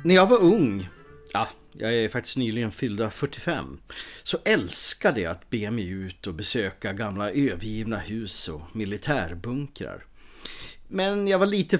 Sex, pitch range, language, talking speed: male, 100-150 Hz, English, 145 wpm